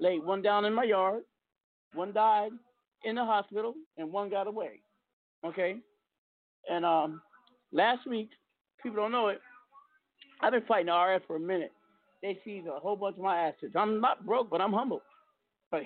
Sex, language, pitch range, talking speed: male, English, 190-250 Hz, 180 wpm